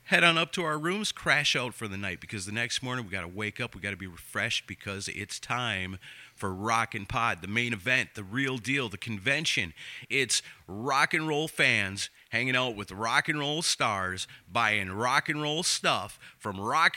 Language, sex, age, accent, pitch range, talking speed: English, male, 30-49, American, 110-160 Hz, 210 wpm